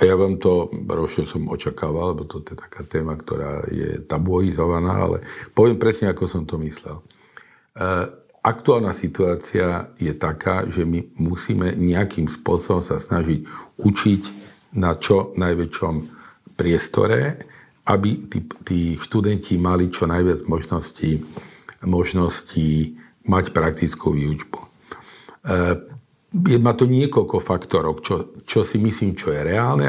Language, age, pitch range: Slovak, 50-69, 85-110 Hz